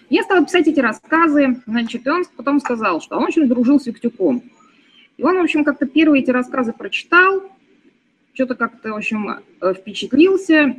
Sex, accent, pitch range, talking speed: female, native, 210-300 Hz, 165 wpm